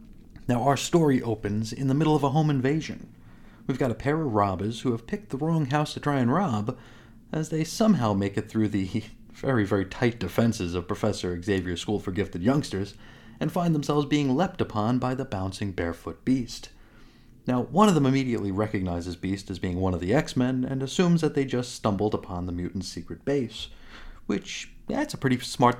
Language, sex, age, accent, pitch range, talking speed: English, male, 30-49, American, 100-135 Hz, 200 wpm